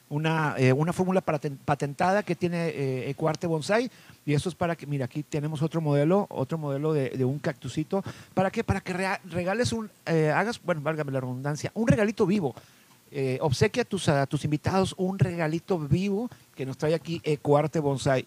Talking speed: 185 wpm